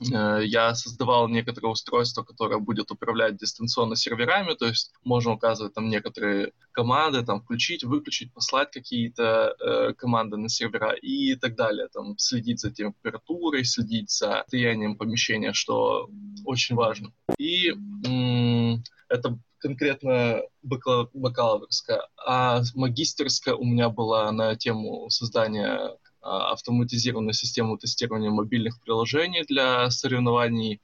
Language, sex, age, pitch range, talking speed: Russian, male, 20-39, 115-135 Hz, 115 wpm